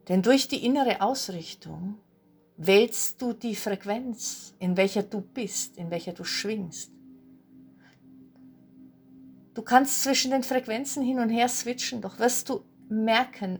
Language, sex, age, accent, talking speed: German, female, 50-69, Austrian, 130 wpm